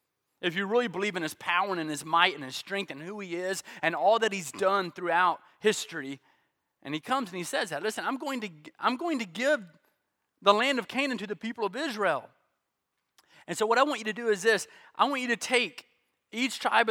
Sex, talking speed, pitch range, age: male, 225 wpm, 175-225 Hz, 30-49